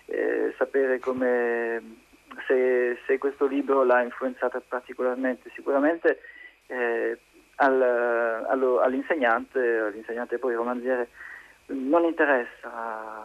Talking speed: 85 wpm